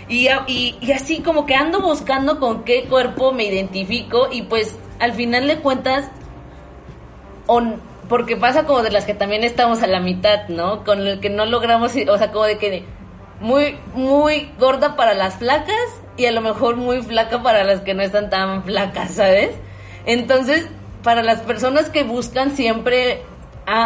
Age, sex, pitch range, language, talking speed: 20-39, female, 205-255 Hz, Spanish, 180 wpm